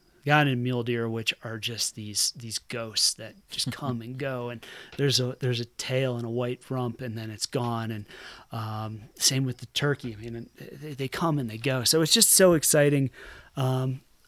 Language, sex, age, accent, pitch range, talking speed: English, male, 30-49, American, 120-140 Hz, 205 wpm